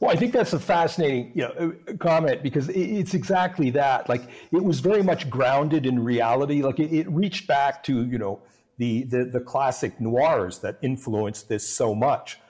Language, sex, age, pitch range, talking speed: English, male, 50-69, 115-140 Hz, 175 wpm